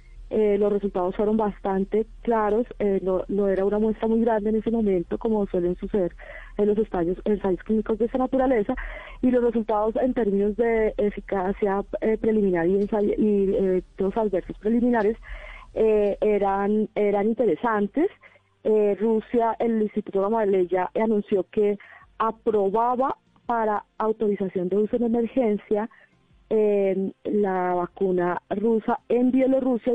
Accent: Colombian